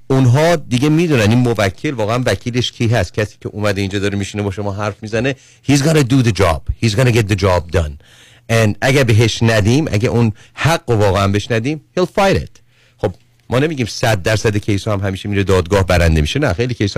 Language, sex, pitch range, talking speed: Persian, male, 100-125 Hz, 200 wpm